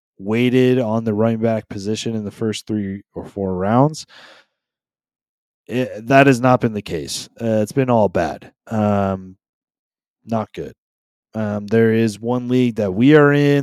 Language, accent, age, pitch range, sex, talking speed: English, American, 20-39, 105-125 Hz, male, 165 wpm